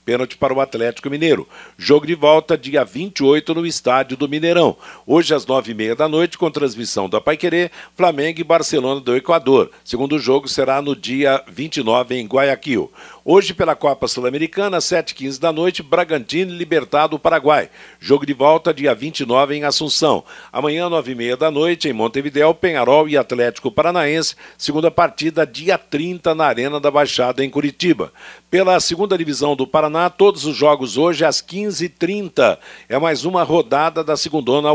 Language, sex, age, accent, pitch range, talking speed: Portuguese, male, 60-79, Brazilian, 135-170 Hz, 165 wpm